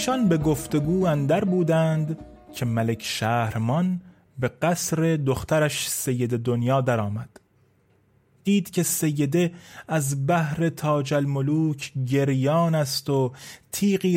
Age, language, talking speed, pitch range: 30-49, Persian, 105 wpm, 135-175 Hz